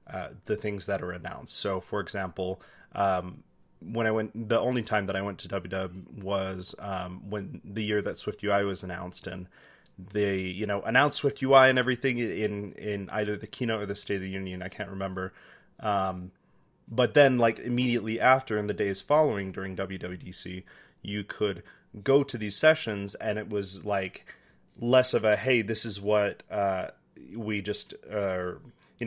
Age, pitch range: 30-49, 95-115 Hz